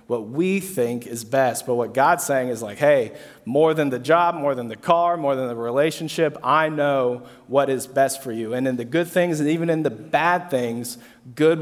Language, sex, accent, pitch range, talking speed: English, male, American, 125-150 Hz, 220 wpm